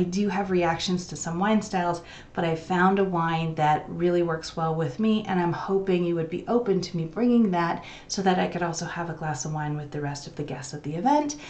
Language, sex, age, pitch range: English, female, 30-49, 160-210 Hz